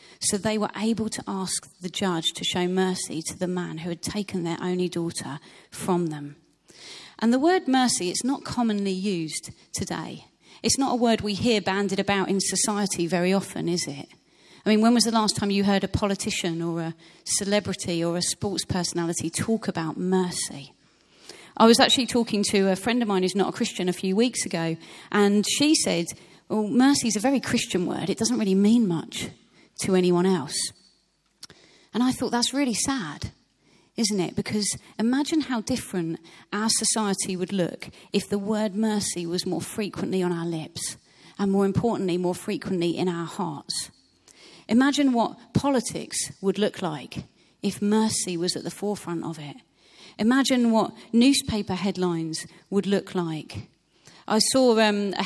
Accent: British